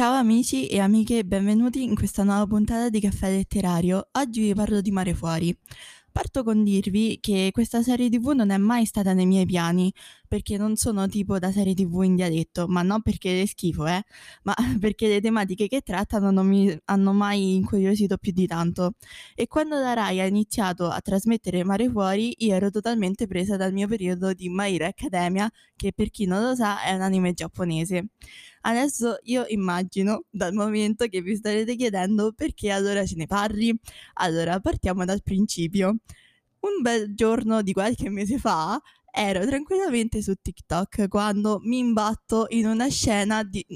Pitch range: 190-225 Hz